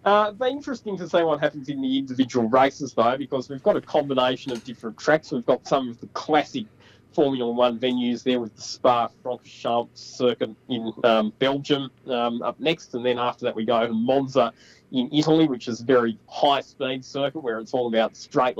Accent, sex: Australian, male